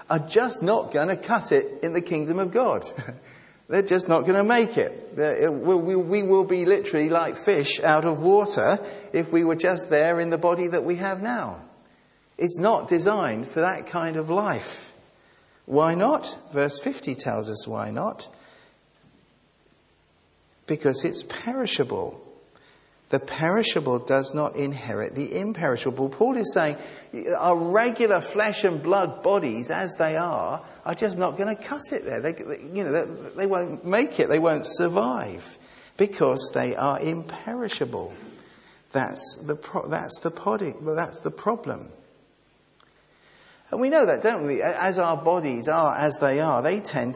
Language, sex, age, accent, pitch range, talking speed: English, male, 50-69, British, 150-205 Hz, 160 wpm